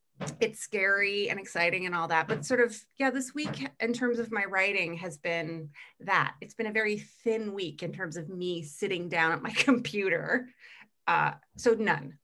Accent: American